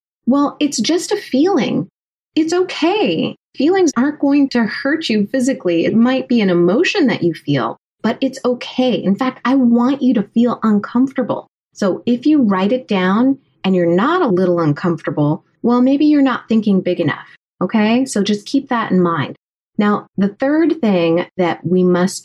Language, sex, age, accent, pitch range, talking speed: English, female, 30-49, American, 170-250 Hz, 180 wpm